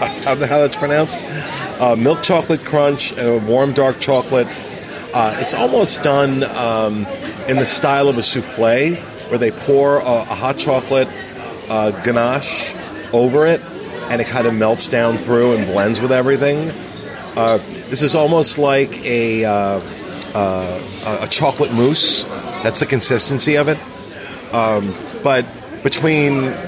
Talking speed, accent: 145 wpm, American